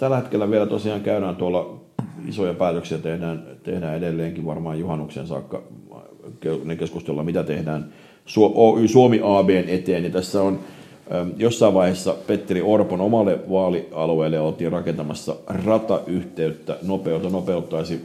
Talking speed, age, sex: 115 wpm, 50-69, male